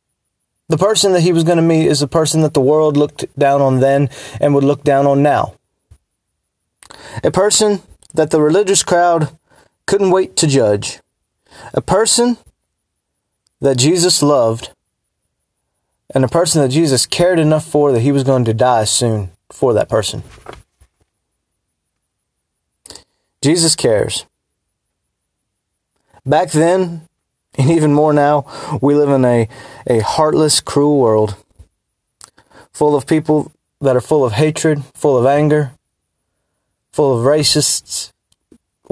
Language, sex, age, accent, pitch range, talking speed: English, male, 20-39, American, 115-155 Hz, 135 wpm